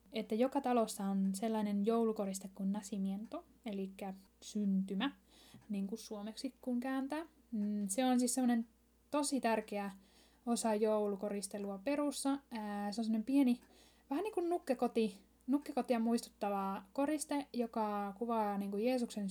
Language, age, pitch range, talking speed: Finnish, 10-29, 205-250 Hz, 125 wpm